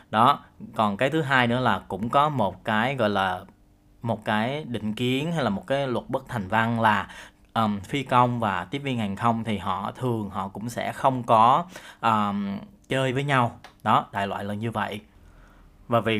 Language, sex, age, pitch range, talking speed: Vietnamese, male, 20-39, 100-120 Hz, 195 wpm